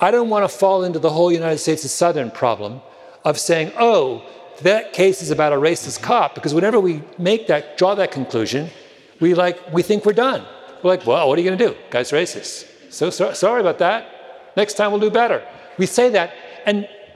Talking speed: 215 wpm